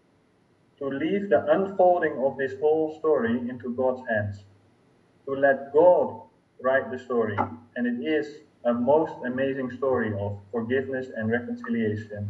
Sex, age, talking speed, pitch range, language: male, 30-49, 135 wpm, 115-150 Hz, English